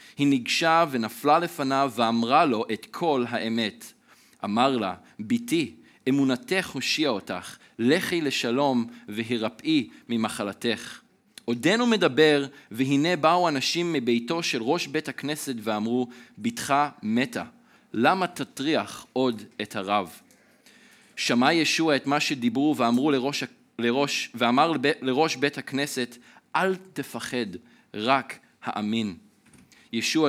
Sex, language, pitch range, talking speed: male, Hebrew, 120-165 Hz, 105 wpm